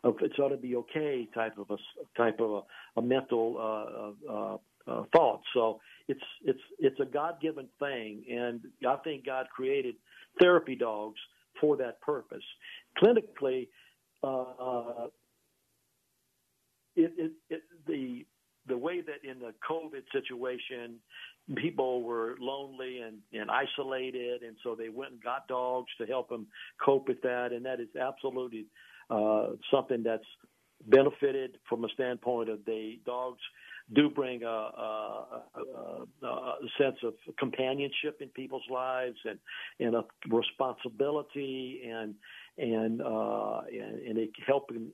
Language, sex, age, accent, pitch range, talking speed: English, male, 60-79, American, 115-140 Hz, 145 wpm